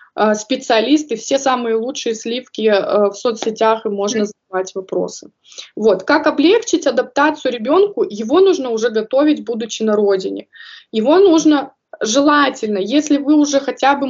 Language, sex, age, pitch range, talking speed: Russian, female, 20-39, 220-290 Hz, 130 wpm